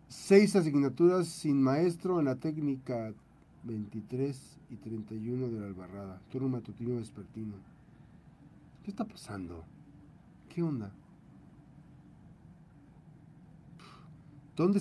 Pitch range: 115-160 Hz